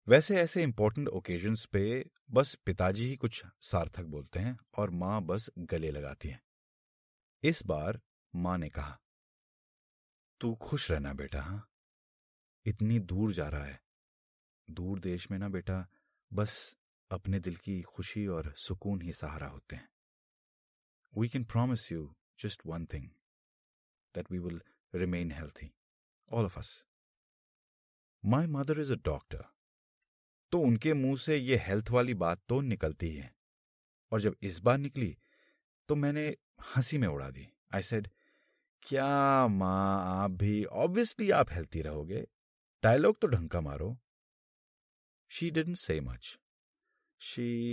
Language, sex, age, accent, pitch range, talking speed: Hindi, male, 30-49, native, 85-115 Hz, 140 wpm